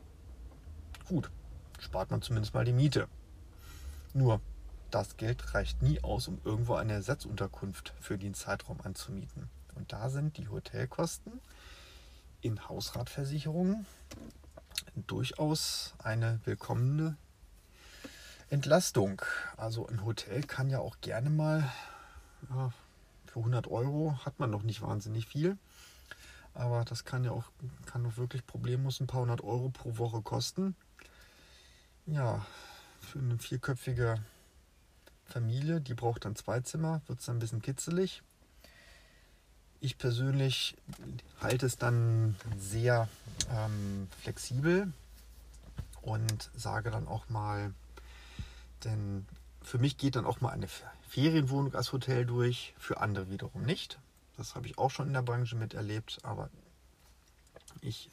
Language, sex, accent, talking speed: German, male, German, 125 wpm